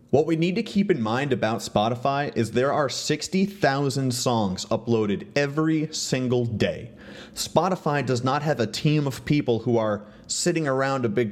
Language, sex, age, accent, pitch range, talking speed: English, male, 30-49, American, 110-135 Hz, 170 wpm